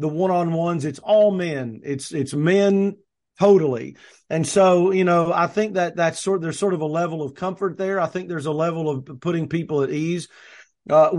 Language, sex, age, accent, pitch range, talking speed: English, male, 40-59, American, 155-185 Hz, 200 wpm